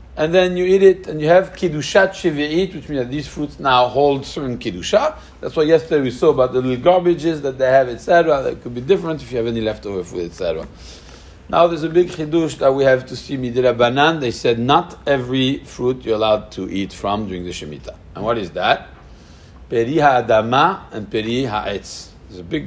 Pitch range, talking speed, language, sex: 100-145 Hz, 210 wpm, English, male